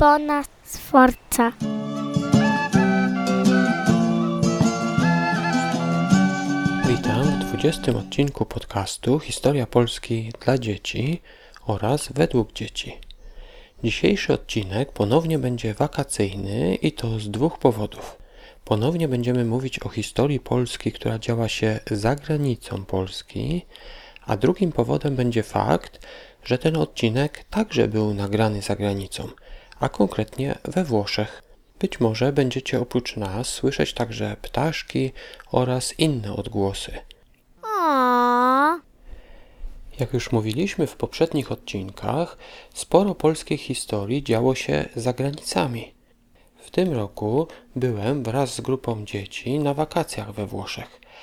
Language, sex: Polish, male